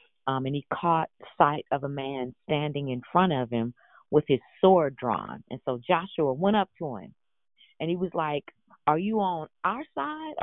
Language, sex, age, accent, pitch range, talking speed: English, female, 40-59, American, 135-185 Hz, 190 wpm